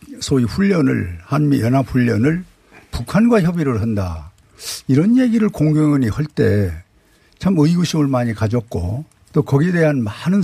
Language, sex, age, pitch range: Korean, male, 60-79, 110-150 Hz